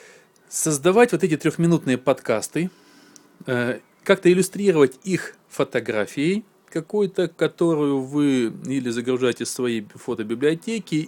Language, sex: Russian, male